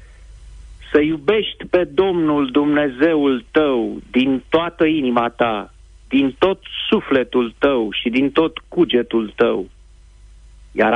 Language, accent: Romanian, native